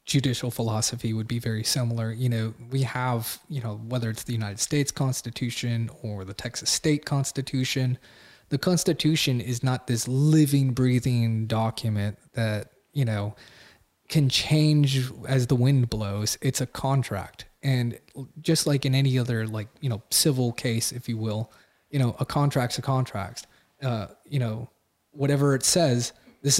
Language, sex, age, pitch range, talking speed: English, male, 20-39, 115-135 Hz, 160 wpm